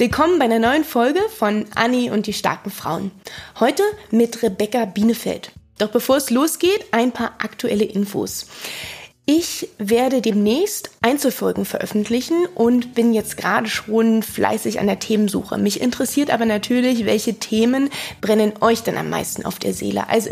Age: 20-39